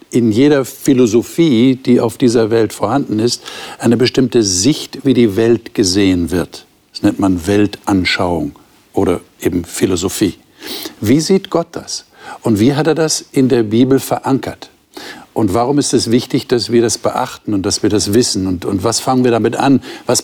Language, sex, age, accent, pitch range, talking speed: German, male, 60-79, German, 105-135 Hz, 175 wpm